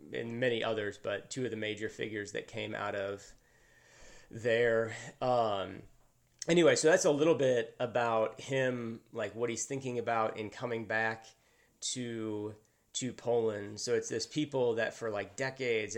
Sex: male